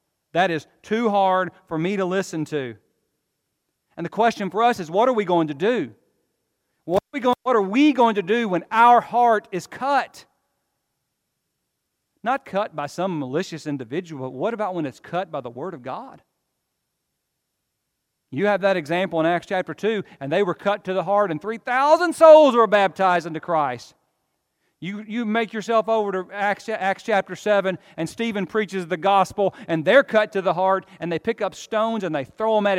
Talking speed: 190 wpm